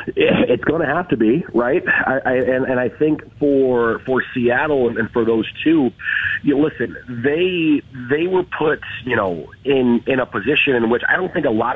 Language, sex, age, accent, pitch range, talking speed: English, male, 40-59, American, 120-150 Hz, 200 wpm